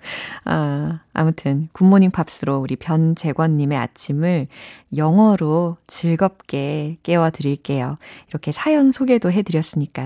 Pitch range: 150-230 Hz